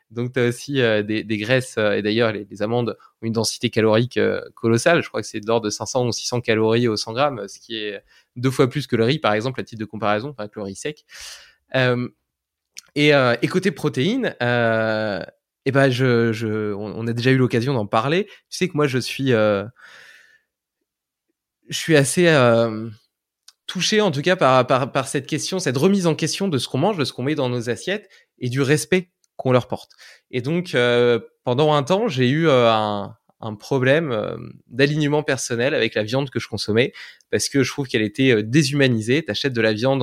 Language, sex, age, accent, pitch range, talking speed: French, male, 20-39, French, 115-145 Hz, 220 wpm